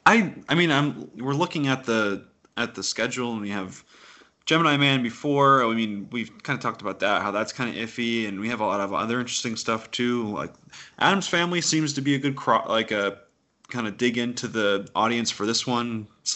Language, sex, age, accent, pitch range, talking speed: English, male, 20-39, American, 100-125 Hz, 220 wpm